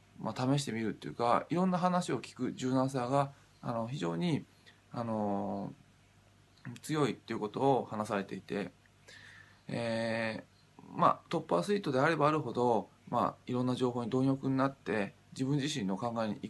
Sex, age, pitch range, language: male, 20-39, 105-135 Hz, Japanese